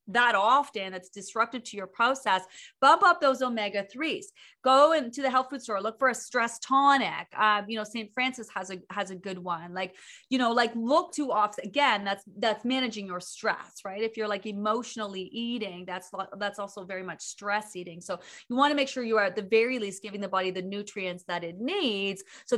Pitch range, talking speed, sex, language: 195-240 Hz, 220 wpm, female, English